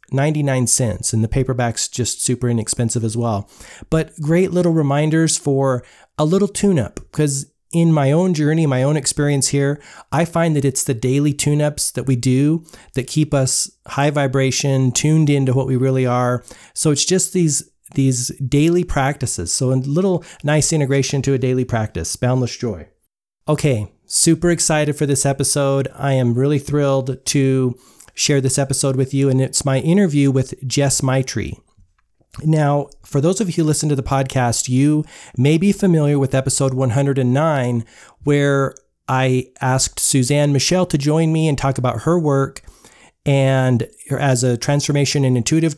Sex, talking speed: male, 165 wpm